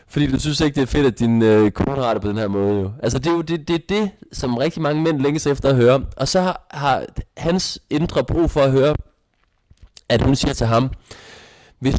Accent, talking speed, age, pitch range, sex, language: native, 235 wpm, 20-39, 115-150 Hz, male, Danish